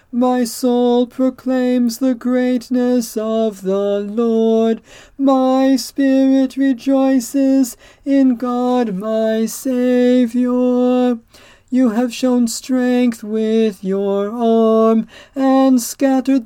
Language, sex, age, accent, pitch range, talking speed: English, male, 40-59, American, 225-260 Hz, 90 wpm